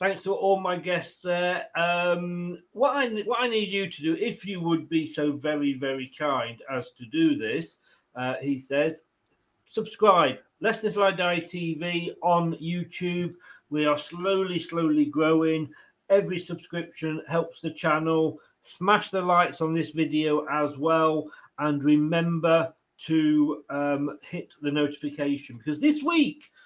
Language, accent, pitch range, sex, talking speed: English, British, 155-205 Hz, male, 145 wpm